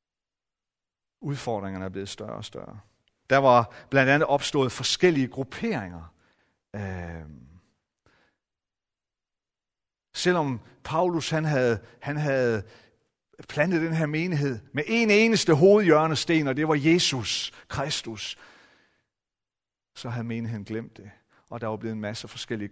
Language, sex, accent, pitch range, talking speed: Danish, male, native, 110-155 Hz, 120 wpm